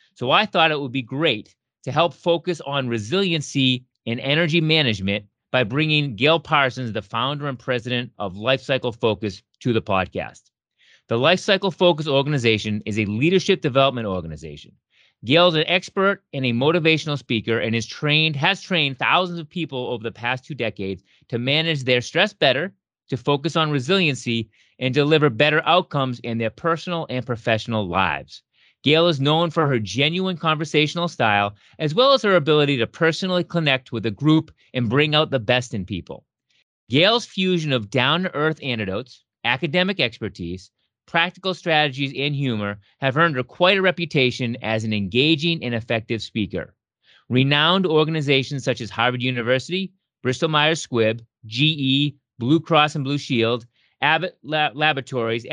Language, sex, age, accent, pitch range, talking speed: English, male, 30-49, American, 120-160 Hz, 155 wpm